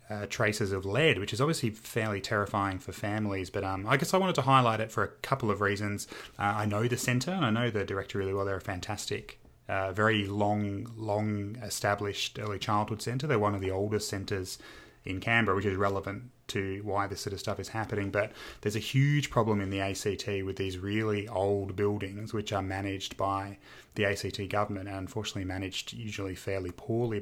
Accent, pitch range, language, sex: Australian, 95-110 Hz, English, male